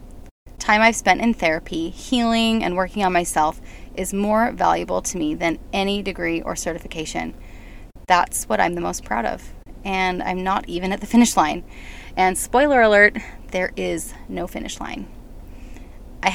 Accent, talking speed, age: American, 160 wpm, 20-39